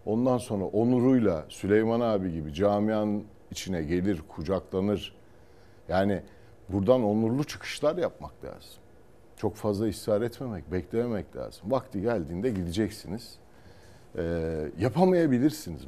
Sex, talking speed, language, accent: male, 100 wpm, Turkish, native